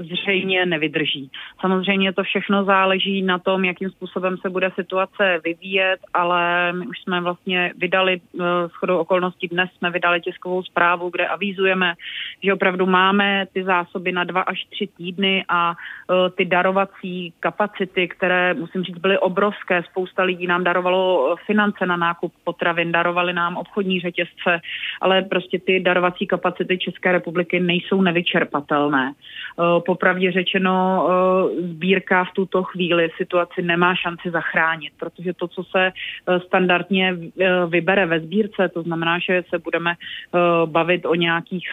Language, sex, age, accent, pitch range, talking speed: Czech, female, 30-49, native, 175-190 Hz, 135 wpm